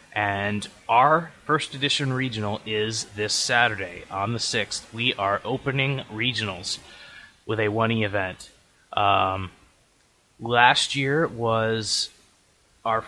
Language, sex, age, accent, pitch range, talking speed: English, male, 20-39, American, 100-125 Hz, 110 wpm